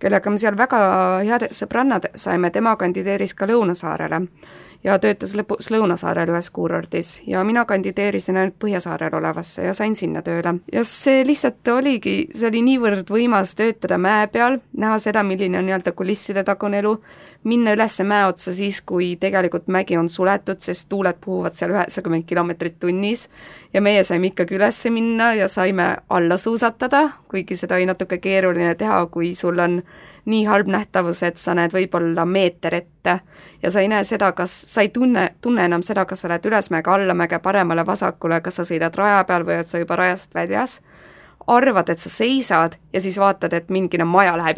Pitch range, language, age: 175-215 Hz, English, 20-39